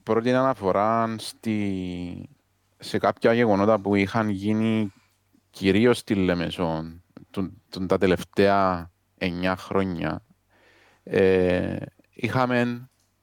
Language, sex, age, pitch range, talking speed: Greek, male, 30-49, 90-105 Hz, 75 wpm